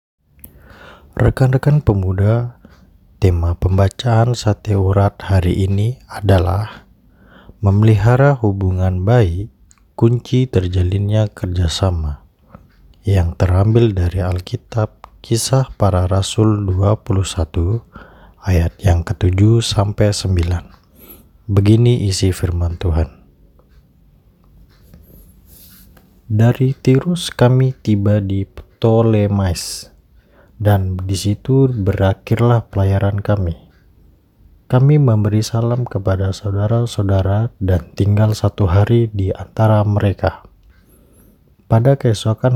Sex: male